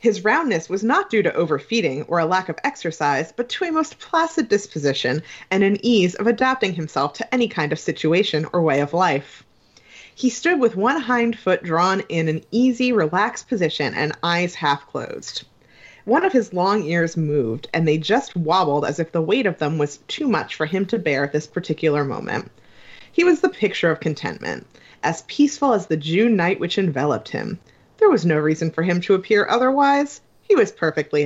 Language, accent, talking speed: English, American, 200 wpm